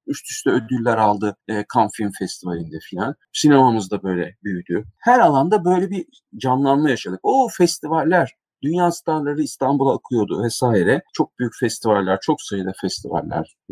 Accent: native